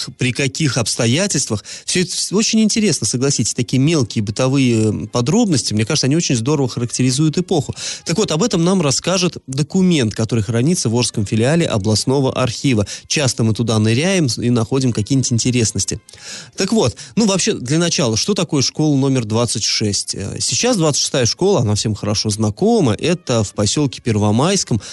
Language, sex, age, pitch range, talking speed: Russian, male, 20-39, 115-160 Hz, 150 wpm